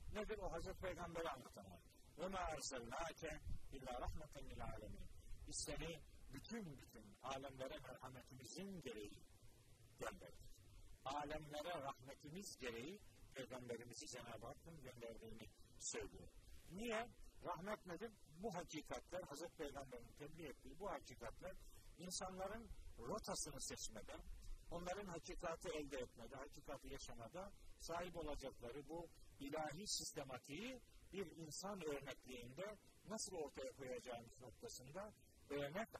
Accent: native